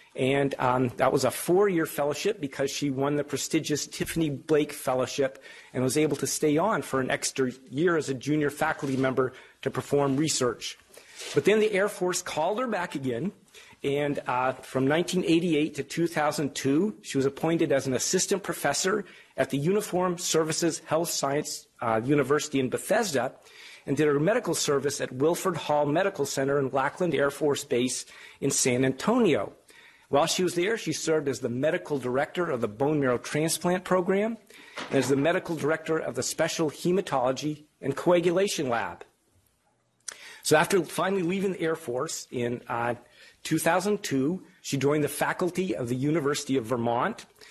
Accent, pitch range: American, 135-170 Hz